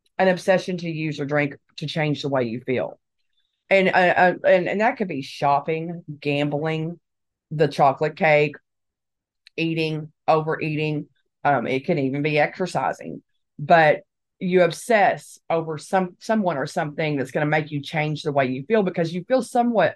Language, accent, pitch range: English, American, 150-185 Hz